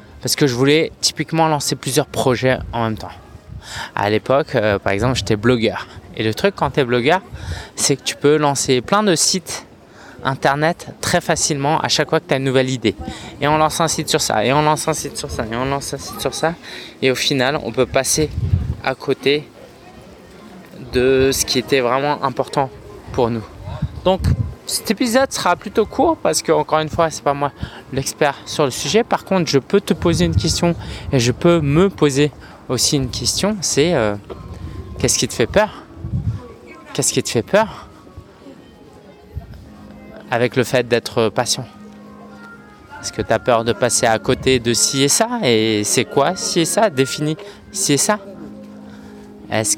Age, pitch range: 20-39, 115-155 Hz